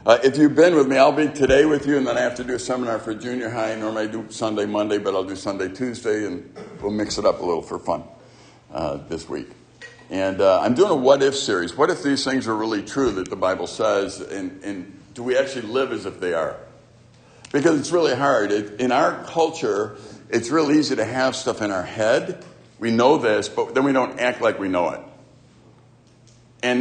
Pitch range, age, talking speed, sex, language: 110-140 Hz, 60-79, 230 wpm, male, English